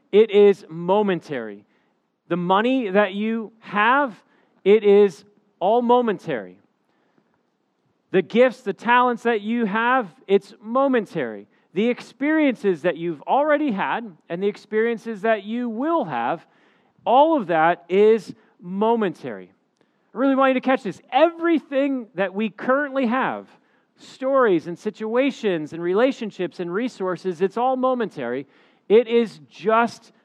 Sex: male